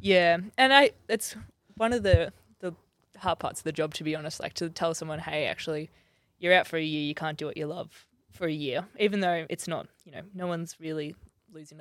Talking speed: 235 wpm